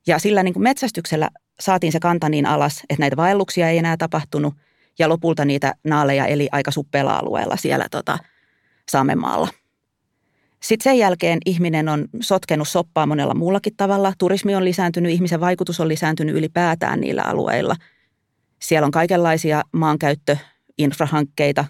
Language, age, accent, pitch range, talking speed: Finnish, 30-49, native, 145-195 Hz, 140 wpm